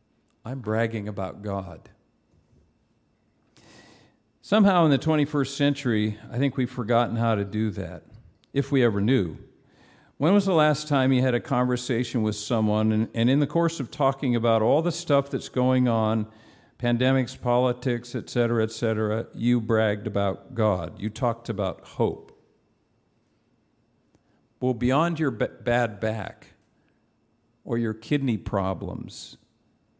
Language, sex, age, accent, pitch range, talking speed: English, male, 50-69, American, 115-140 Hz, 140 wpm